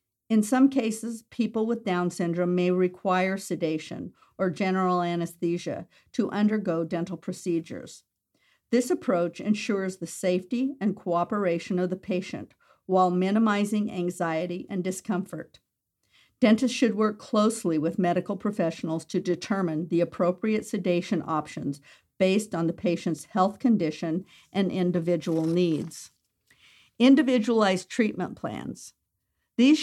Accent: American